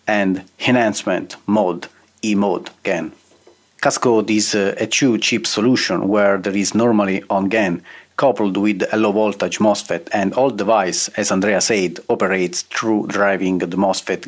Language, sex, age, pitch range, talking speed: English, male, 40-59, 95-105 Hz, 145 wpm